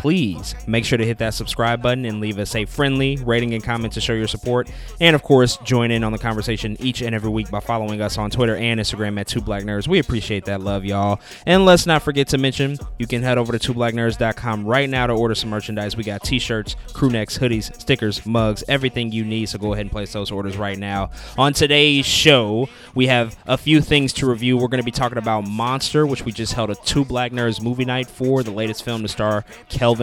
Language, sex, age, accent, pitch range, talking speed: English, male, 20-39, American, 110-130 Hz, 240 wpm